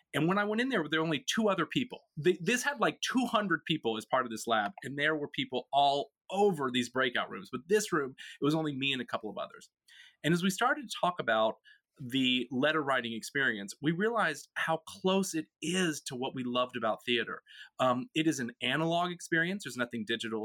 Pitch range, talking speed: 120-175 Hz, 220 wpm